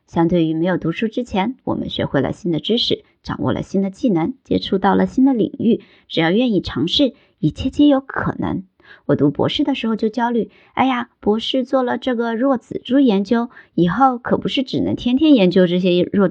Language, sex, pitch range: Chinese, male, 175-255 Hz